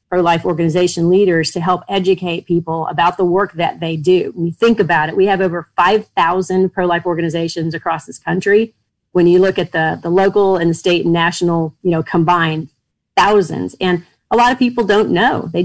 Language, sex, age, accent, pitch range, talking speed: English, female, 40-59, American, 165-190 Hz, 190 wpm